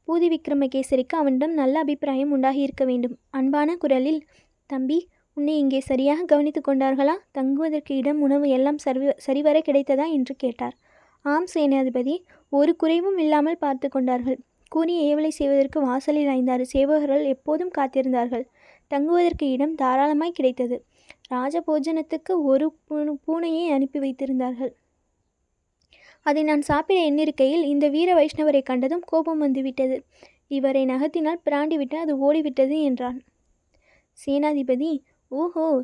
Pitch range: 270-315 Hz